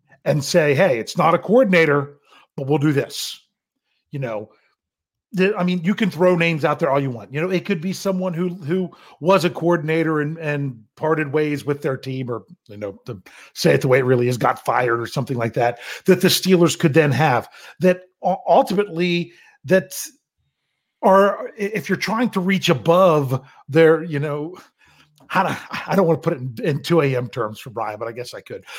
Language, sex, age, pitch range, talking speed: English, male, 40-59, 135-185 Hz, 205 wpm